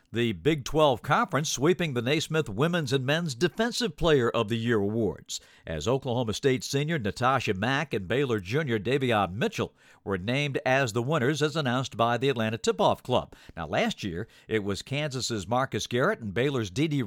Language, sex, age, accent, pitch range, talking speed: English, male, 60-79, American, 115-155 Hz, 180 wpm